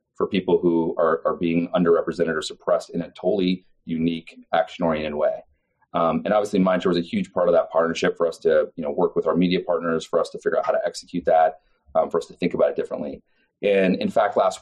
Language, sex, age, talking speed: English, male, 30-49, 235 wpm